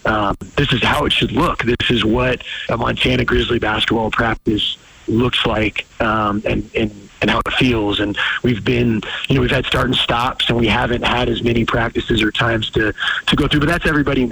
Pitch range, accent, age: 110-125 Hz, American, 30-49